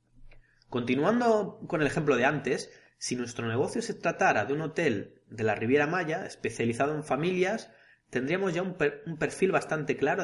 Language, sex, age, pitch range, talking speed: Spanish, male, 30-49, 130-180 Hz, 160 wpm